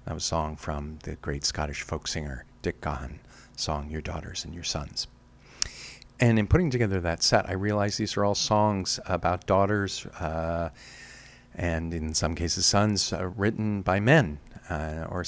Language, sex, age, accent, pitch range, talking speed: English, male, 50-69, American, 80-100 Hz, 175 wpm